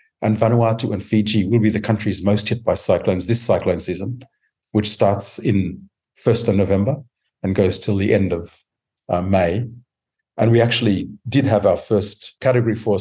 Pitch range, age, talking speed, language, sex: 100-115 Hz, 50-69, 175 wpm, English, male